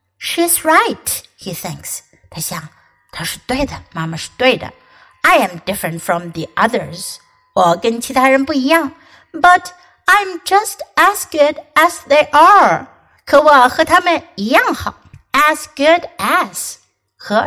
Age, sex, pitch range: 60-79, female, 220-320 Hz